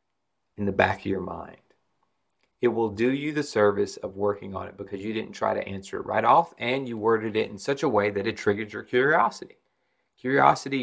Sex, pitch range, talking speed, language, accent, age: male, 100-120 Hz, 215 wpm, English, American, 30-49